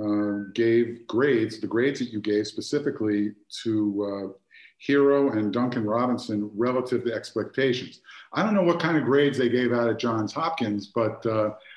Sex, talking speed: male, 170 wpm